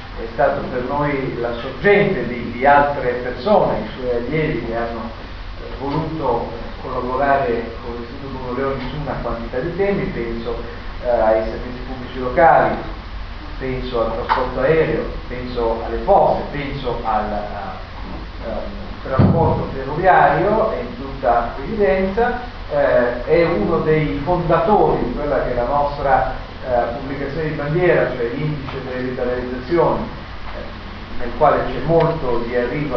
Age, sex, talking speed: 40-59, male, 135 wpm